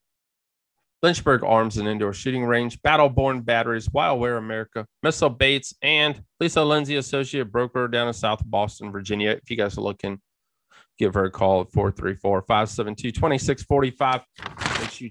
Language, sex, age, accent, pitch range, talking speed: English, male, 30-49, American, 100-135 Hz, 145 wpm